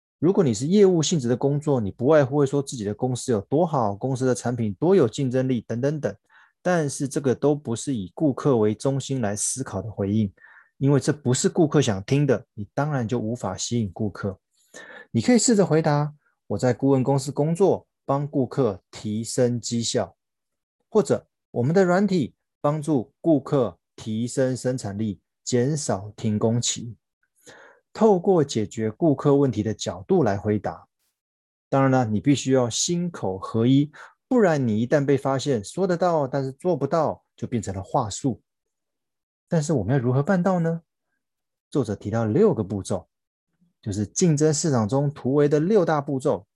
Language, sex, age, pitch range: Chinese, male, 20-39, 115-155 Hz